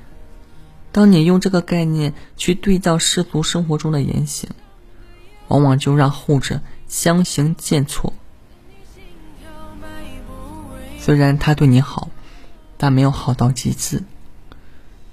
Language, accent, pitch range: Chinese, native, 100-170 Hz